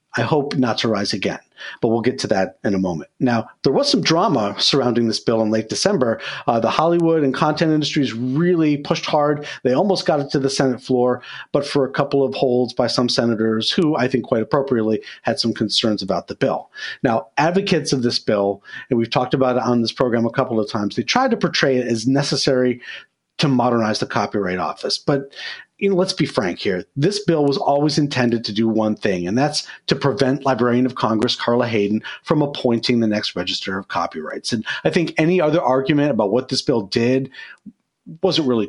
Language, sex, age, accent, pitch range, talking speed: English, male, 40-59, American, 115-145 Hz, 210 wpm